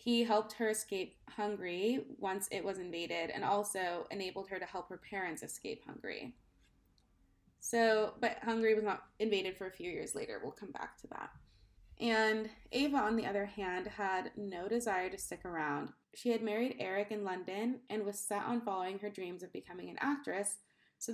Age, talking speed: 20-39, 185 wpm